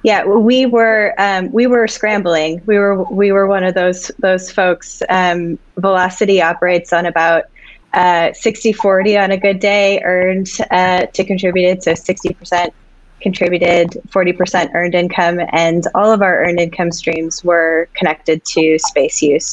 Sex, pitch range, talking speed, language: female, 170-195 Hz, 155 wpm, English